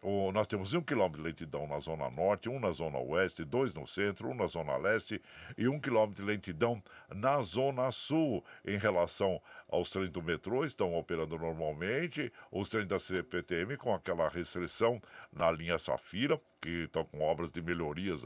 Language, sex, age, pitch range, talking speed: Portuguese, male, 60-79, 85-110 Hz, 175 wpm